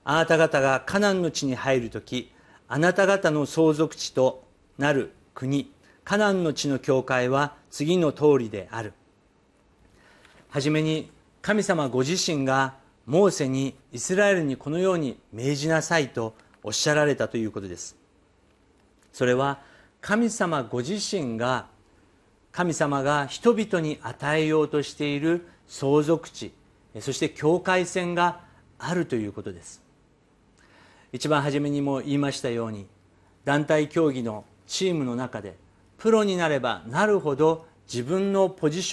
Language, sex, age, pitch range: Japanese, male, 50-69, 115-170 Hz